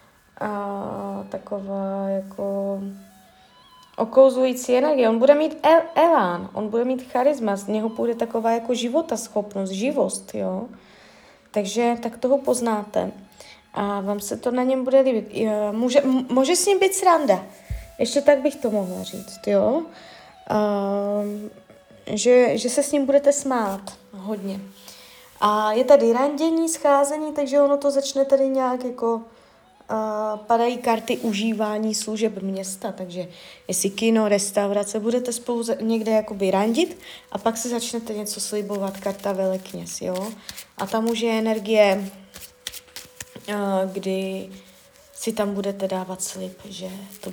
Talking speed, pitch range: 135 wpm, 200-255 Hz